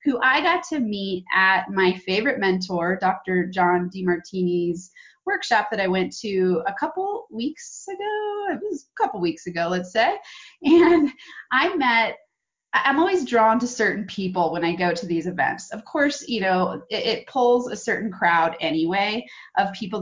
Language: English